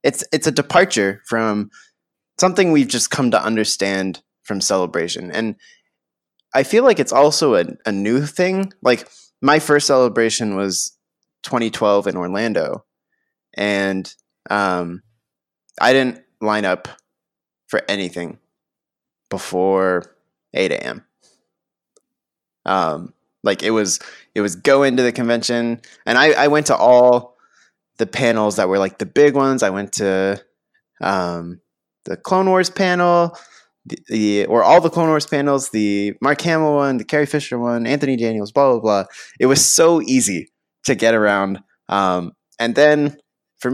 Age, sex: 20-39, male